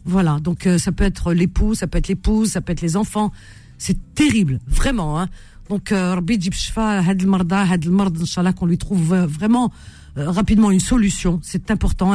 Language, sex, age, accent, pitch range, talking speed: French, female, 50-69, French, 170-210 Hz, 160 wpm